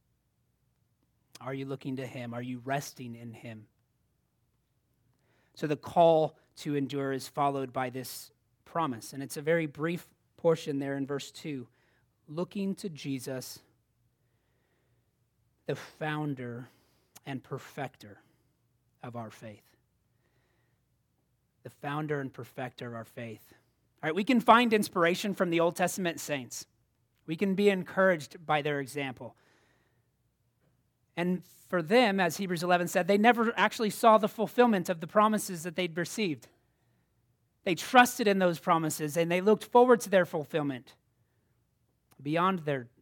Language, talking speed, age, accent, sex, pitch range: English, 135 wpm, 30-49, American, male, 120-165 Hz